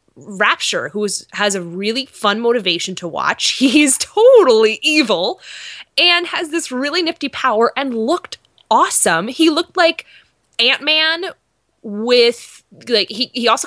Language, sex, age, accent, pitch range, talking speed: English, female, 20-39, American, 220-325 Hz, 130 wpm